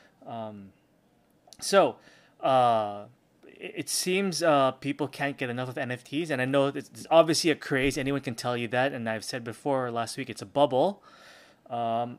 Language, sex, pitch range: English, male, 120-145 Hz